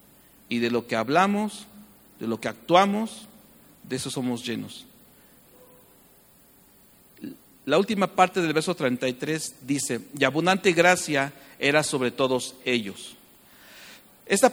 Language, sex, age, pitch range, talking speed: English, male, 50-69, 125-165 Hz, 115 wpm